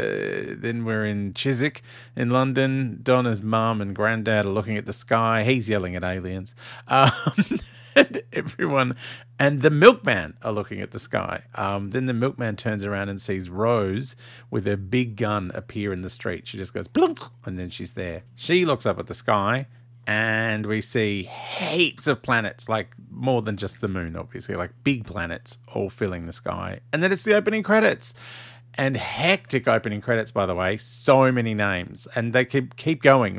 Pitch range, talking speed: 100-125 Hz, 185 wpm